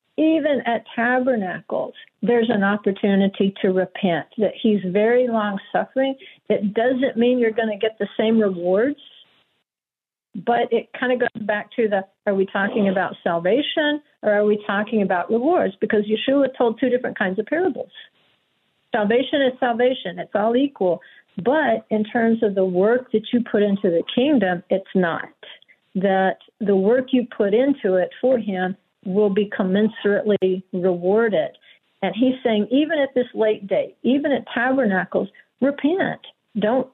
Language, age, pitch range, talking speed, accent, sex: English, 50-69, 195-245 Hz, 155 wpm, American, female